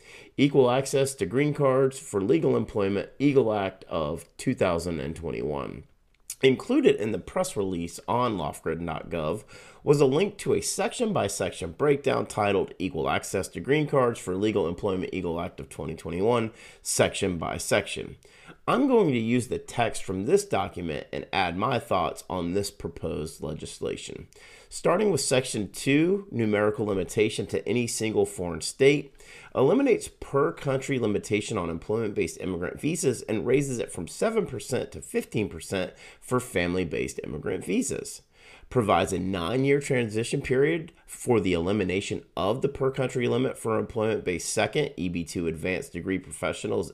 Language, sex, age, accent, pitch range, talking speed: English, male, 30-49, American, 95-135 Hz, 145 wpm